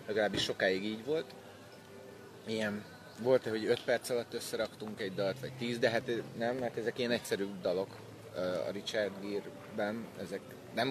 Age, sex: 30-49, male